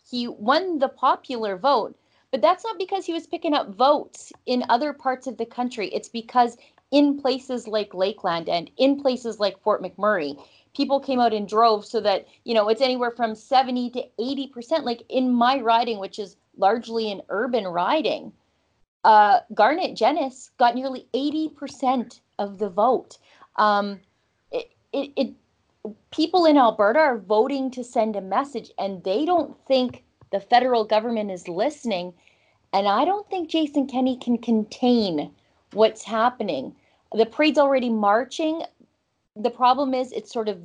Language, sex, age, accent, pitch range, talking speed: English, female, 30-49, American, 210-270 Hz, 160 wpm